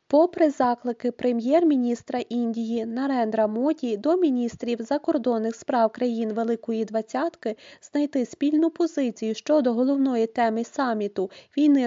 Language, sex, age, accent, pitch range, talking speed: Ukrainian, female, 20-39, native, 230-285 Hz, 110 wpm